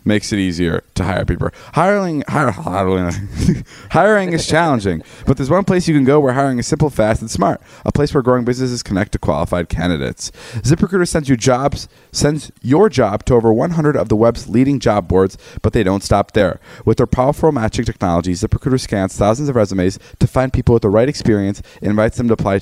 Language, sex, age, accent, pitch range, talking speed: English, male, 20-39, American, 100-140 Hz, 210 wpm